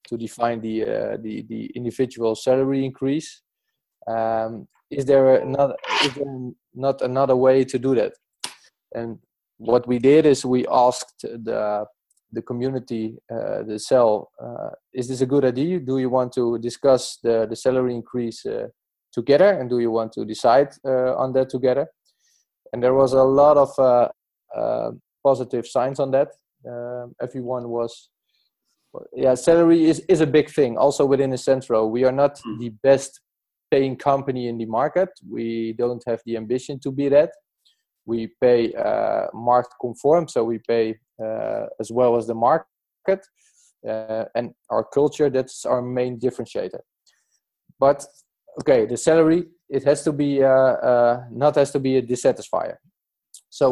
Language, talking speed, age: English, 160 wpm, 20-39